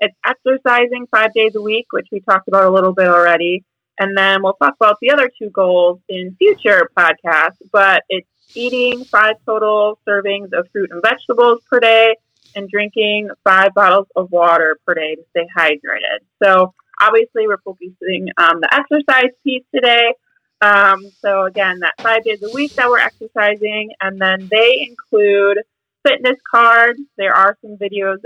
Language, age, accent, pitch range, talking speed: English, 30-49, American, 185-235 Hz, 170 wpm